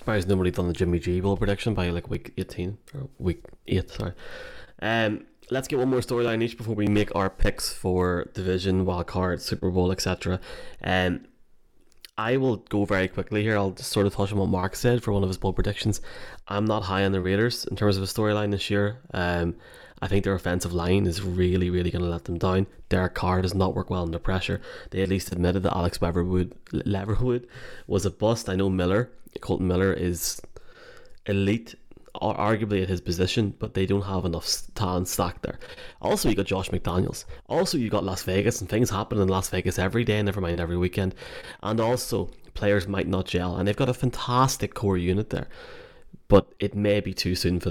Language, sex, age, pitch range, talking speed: English, male, 20-39, 90-105 Hz, 210 wpm